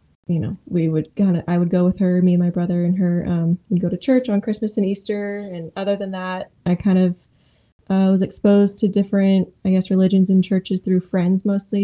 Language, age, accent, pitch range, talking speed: English, 10-29, American, 175-195 Hz, 235 wpm